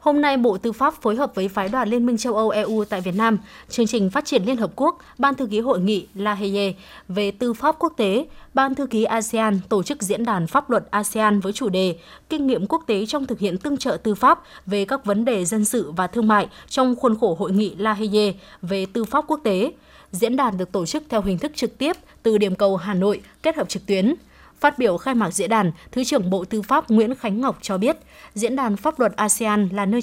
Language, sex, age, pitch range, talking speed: Vietnamese, female, 20-39, 205-260 Hz, 250 wpm